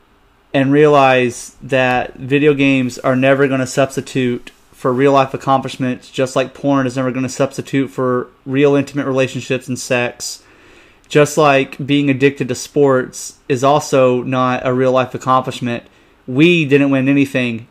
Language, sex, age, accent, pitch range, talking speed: English, male, 30-49, American, 125-135 Hz, 155 wpm